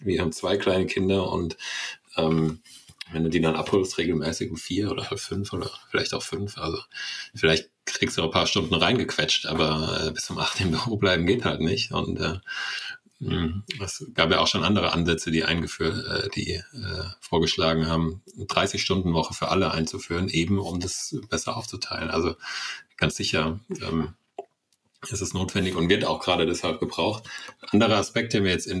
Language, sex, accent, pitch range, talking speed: German, male, German, 85-100 Hz, 185 wpm